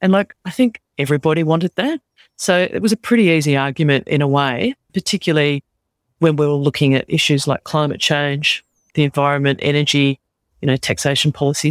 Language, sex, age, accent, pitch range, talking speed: English, female, 40-59, Australian, 140-165 Hz, 175 wpm